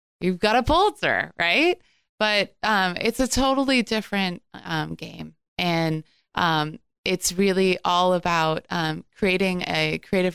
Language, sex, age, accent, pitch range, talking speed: English, female, 20-39, American, 165-195 Hz, 135 wpm